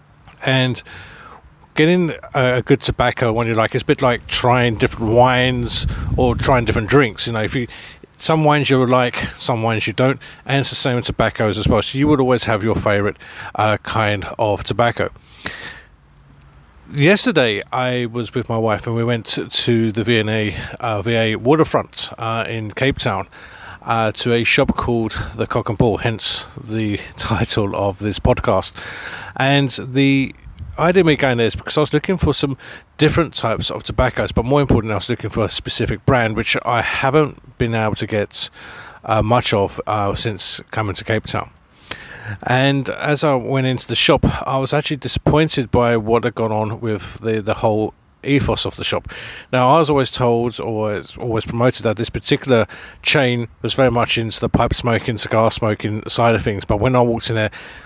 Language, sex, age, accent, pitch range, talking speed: English, male, 40-59, British, 110-130 Hz, 190 wpm